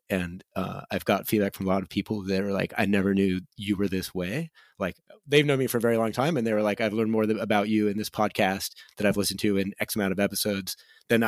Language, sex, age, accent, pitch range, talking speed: English, male, 30-49, American, 95-110 Hz, 270 wpm